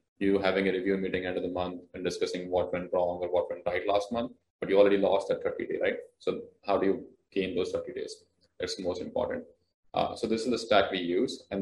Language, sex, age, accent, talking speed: English, male, 20-39, Indian, 250 wpm